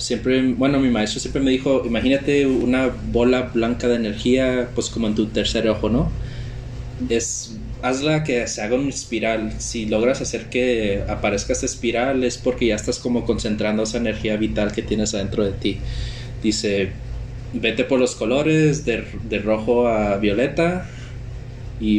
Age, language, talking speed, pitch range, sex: 20-39, Spanish, 160 wpm, 110-125 Hz, male